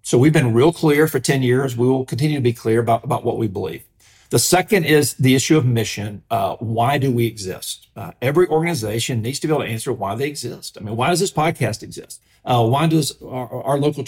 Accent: American